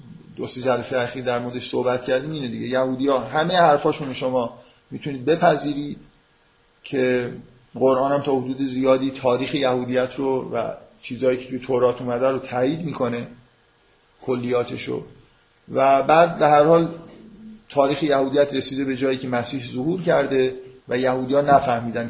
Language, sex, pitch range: Persian, male, 125-155 Hz